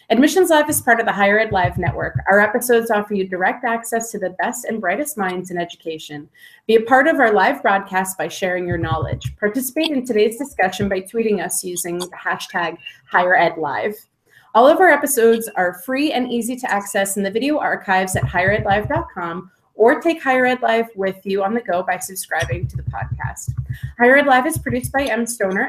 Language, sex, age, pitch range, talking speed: English, female, 30-49, 185-240 Hz, 200 wpm